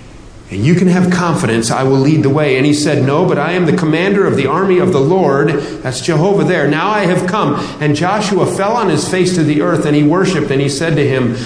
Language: English